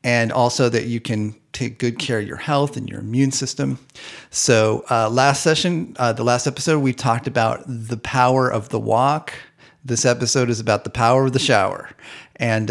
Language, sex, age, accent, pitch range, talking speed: English, male, 40-59, American, 115-135 Hz, 195 wpm